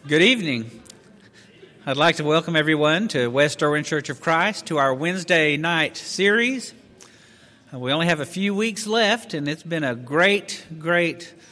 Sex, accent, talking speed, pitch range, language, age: male, American, 160 wpm, 125-170 Hz, English, 50-69